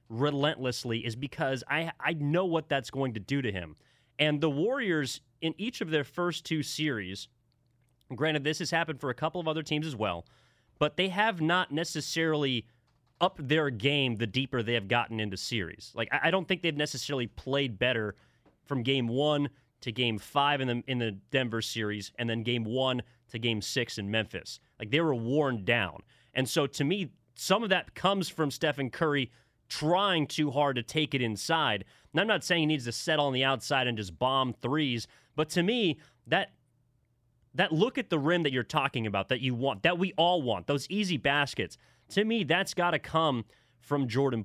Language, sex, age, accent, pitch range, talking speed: English, male, 30-49, American, 120-155 Hz, 200 wpm